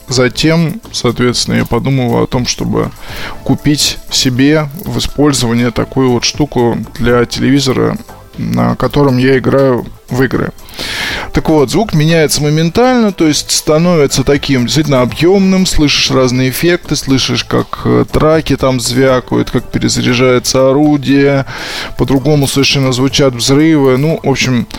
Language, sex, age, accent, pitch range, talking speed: Russian, male, 20-39, native, 125-150 Hz, 125 wpm